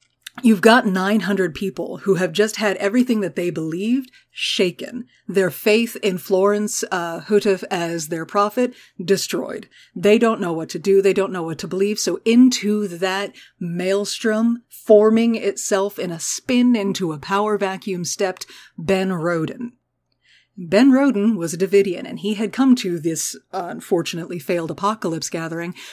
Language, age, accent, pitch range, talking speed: English, 30-49, American, 180-230 Hz, 155 wpm